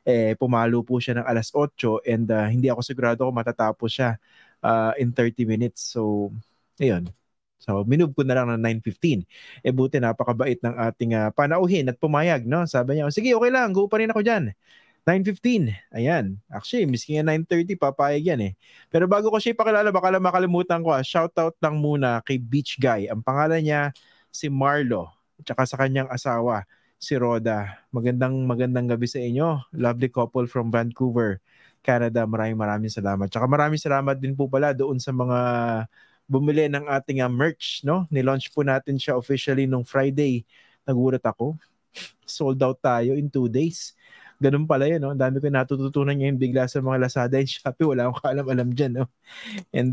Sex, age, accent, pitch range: male, 20-39, Filipino, 115-140 Hz